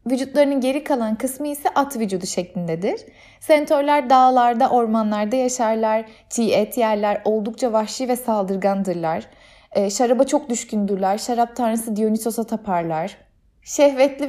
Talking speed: 120 wpm